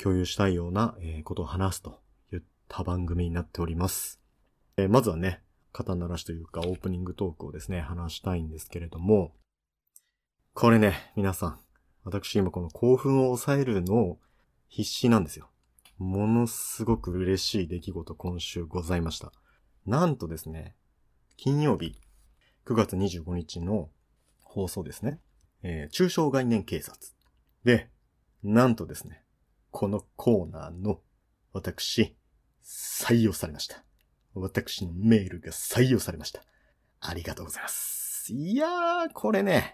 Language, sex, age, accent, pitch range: Japanese, male, 30-49, native, 85-120 Hz